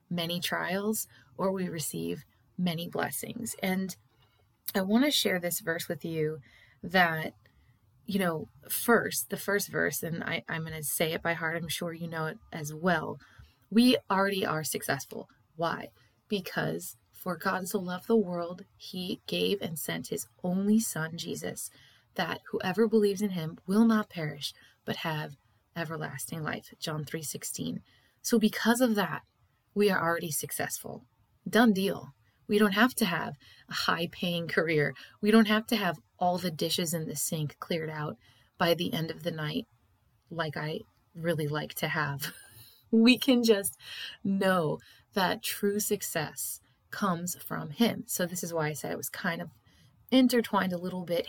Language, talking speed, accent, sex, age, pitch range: English, 165 wpm, American, female, 20-39, 155-205 Hz